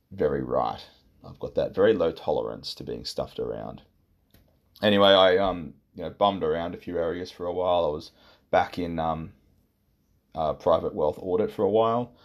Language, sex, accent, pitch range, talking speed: English, male, Australian, 80-100 Hz, 180 wpm